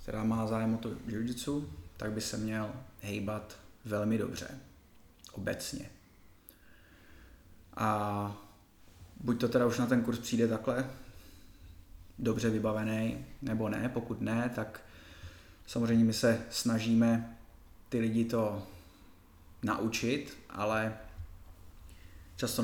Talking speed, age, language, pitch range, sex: 110 wpm, 20-39, Czech, 100-115 Hz, male